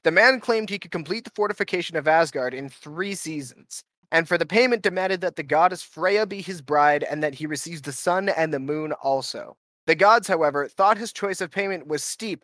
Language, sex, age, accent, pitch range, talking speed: English, male, 20-39, American, 150-195 Hz, 215 wpm